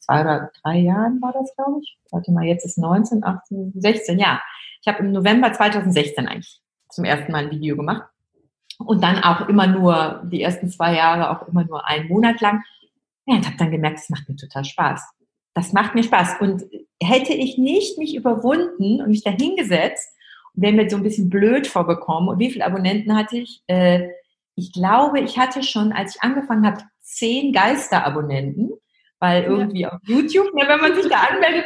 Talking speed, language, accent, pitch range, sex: 190 wpm, German, German, 180-255 Hz, female